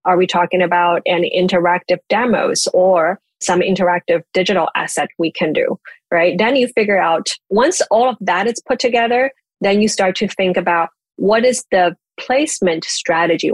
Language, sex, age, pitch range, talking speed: English, female, 30-49, 175-230 Hz, 170 wpm